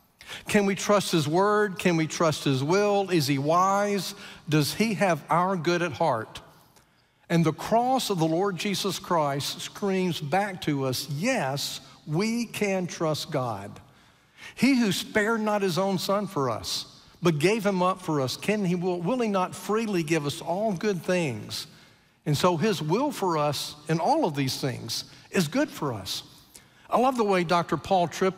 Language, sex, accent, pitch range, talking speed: English, male, American, 145-195 Hz, 180 wpm